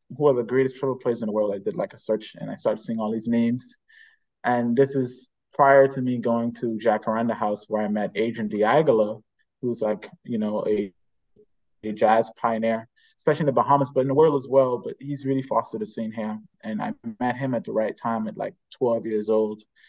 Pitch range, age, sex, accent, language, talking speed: 110-130 Hz, 20-39, male, American, English, 225 wpm